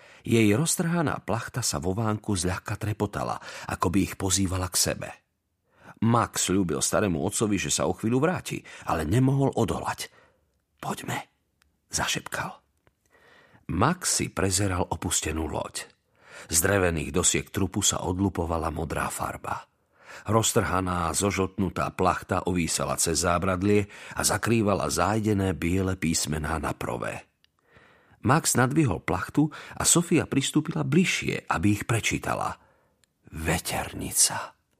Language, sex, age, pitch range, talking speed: Slovak, male, 50-69, 90-130 Hz, 110 wpm